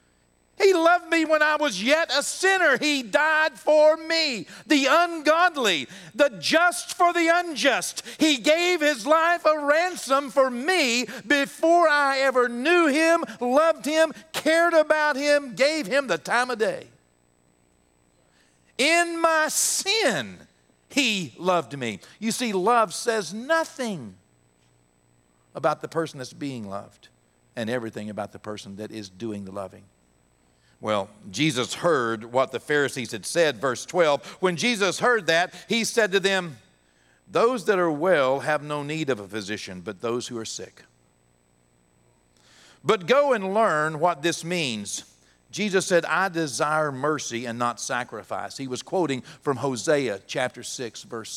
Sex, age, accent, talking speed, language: male, 50-69, American, 150 wpm, English